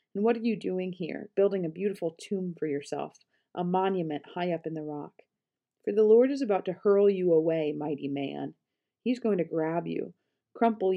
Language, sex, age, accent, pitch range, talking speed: English, female, 40-59, American, 165-200 Hz, 195 wpm